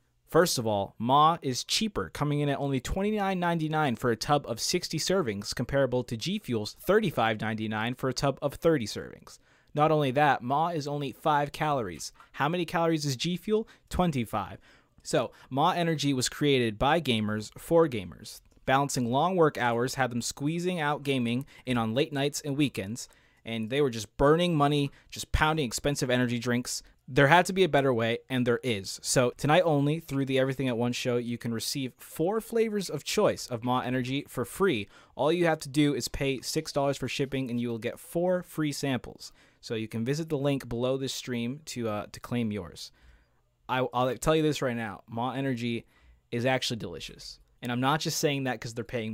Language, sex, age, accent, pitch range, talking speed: English, male, 20-39, American, 120-150 Hz, 195 wpm